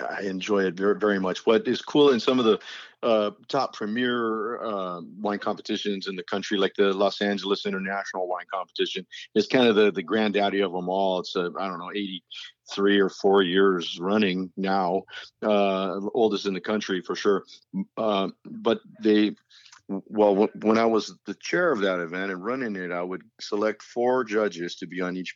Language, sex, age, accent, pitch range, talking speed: English, male, 50-69, American, 95-110 Hz, 190 wpm